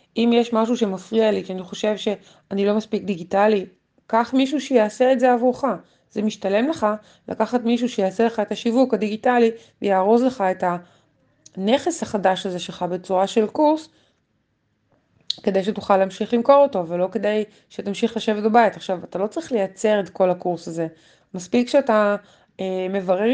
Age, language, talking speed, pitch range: 20-39, Hebrew, 150 wpm, 190-235 Hz